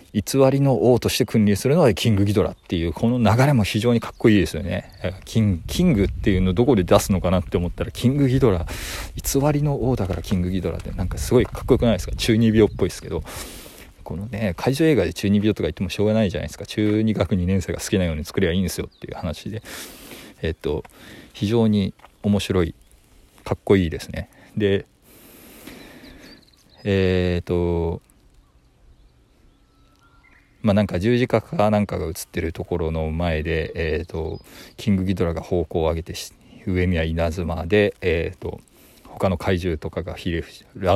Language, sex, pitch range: Japanese, male, 85-110 Hz